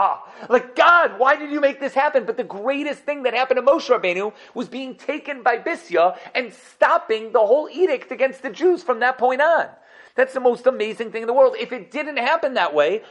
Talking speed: 220 wpm